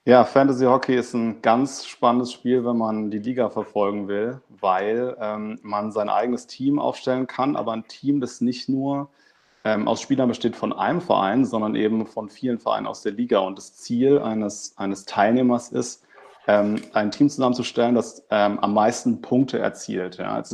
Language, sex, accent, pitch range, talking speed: German, male, German, 105-125 Hz, 175 wpm